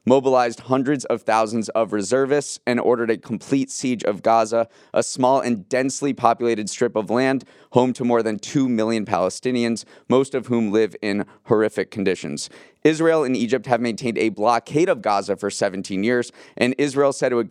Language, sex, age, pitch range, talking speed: English, male, 20-39, 110-130 Hz, 180 wpm